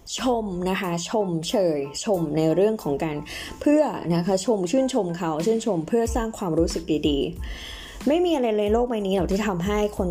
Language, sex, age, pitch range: Thai, female, 20-39, 170-230 Hz